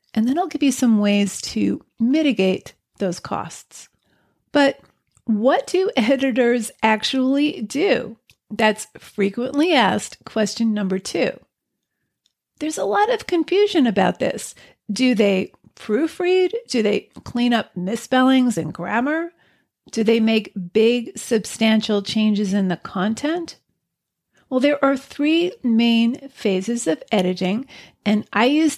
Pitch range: 210-265 Hz